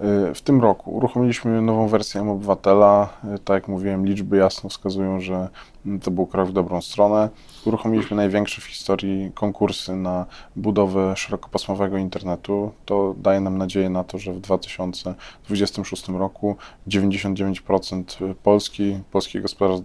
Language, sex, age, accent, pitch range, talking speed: Polish, male, 20-39, native, 95-100 Hz, 125 wpm